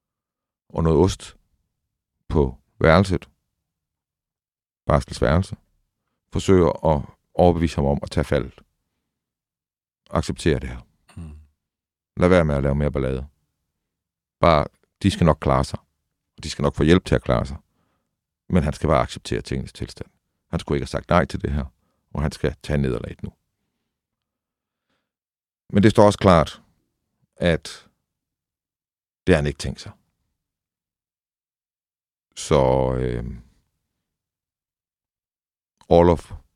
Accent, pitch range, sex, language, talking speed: native, 70-85 Hz, male, Danish, 125 wpm